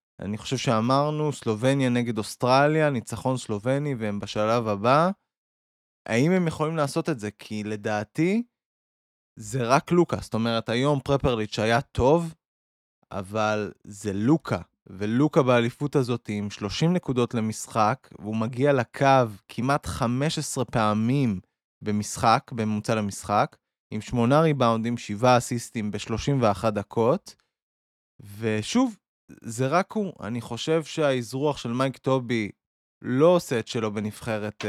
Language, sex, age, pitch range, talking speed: Hebrew, male, 20-39, 105-140 Hz, 110 wpm